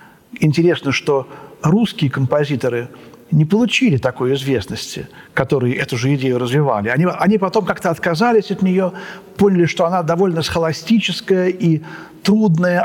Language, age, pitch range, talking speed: Russian, 50-69, 150-200 Hz, 125 wpm